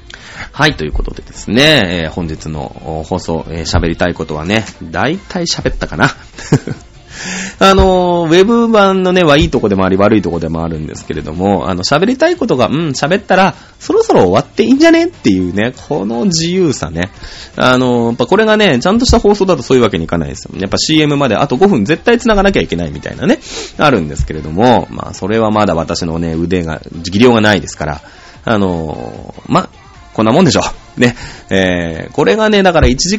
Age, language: 20-39, Japanese